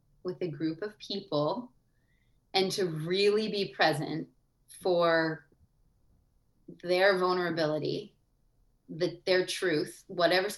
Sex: female